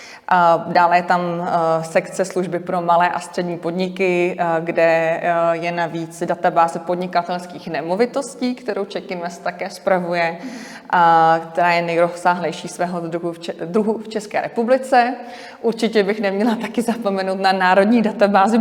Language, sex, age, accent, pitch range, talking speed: Czech, female, 30-49, native, 175-200 Hz, 125 wpm